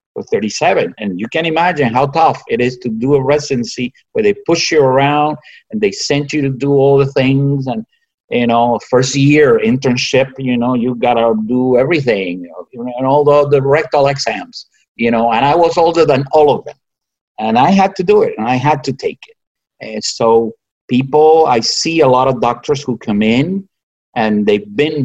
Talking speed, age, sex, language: 205 wpm, 50-69, male, English